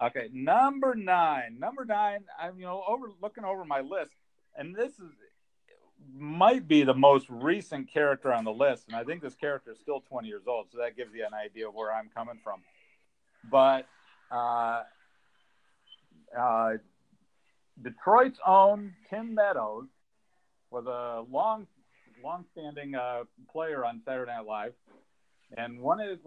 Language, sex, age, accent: English, male, 50-69, American